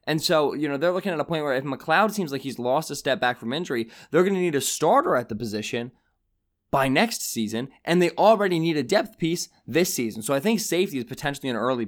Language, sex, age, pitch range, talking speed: English, male, 20-39, 115-155 Hz, 255 wpm